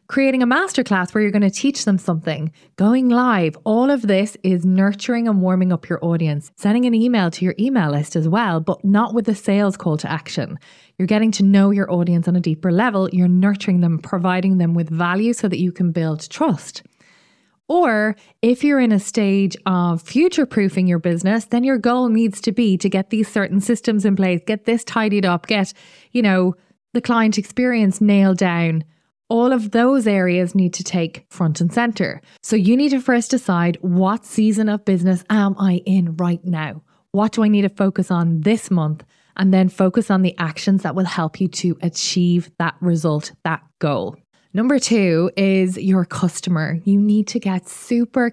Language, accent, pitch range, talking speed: English, Irish, 175-220 Hz, 195 wpm